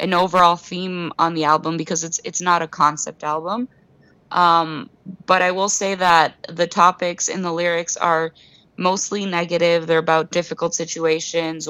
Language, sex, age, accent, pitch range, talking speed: English, female, 20-39, American, 160-190 Hz, 160 wpm